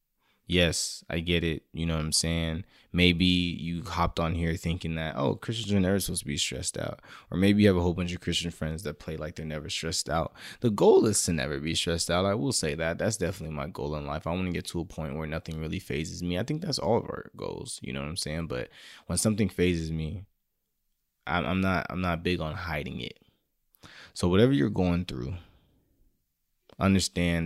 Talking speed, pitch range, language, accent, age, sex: 225 wpm, 80-100 Hz, English, American, 20-39, male